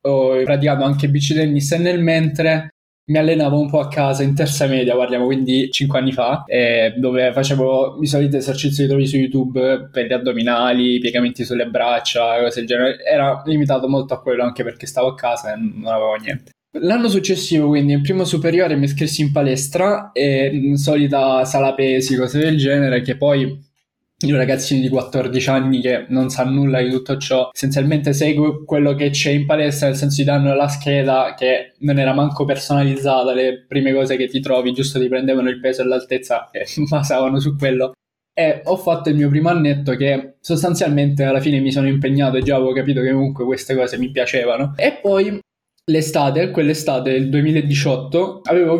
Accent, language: native, Italian